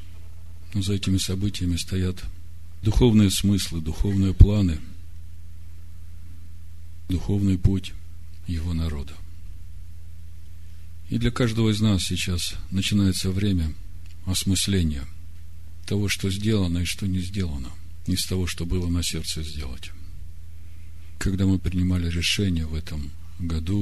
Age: 50-69